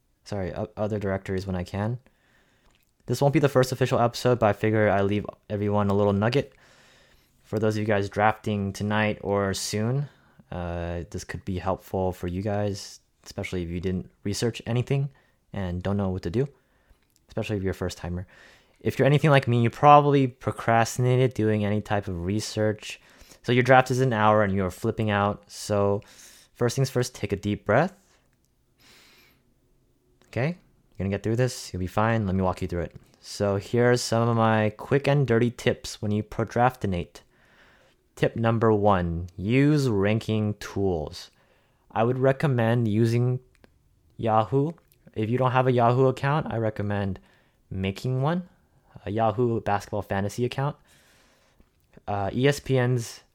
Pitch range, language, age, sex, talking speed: 100-125 Hz, English, 20-39, male, 165 wpm